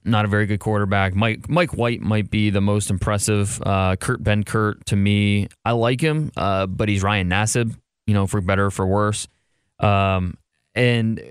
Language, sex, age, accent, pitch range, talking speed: English, male, 20-39, American, 95-115 Hz, 185 wpm